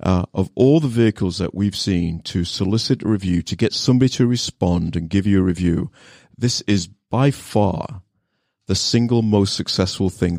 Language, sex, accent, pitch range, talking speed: English, male, British, 90-115 Hz, 180 wpm